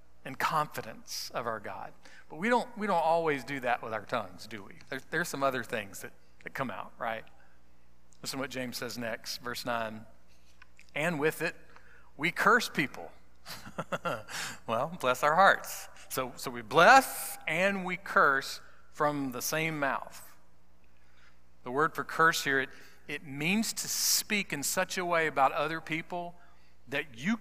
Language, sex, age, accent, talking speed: English, male, 40-59, American, 165 wpm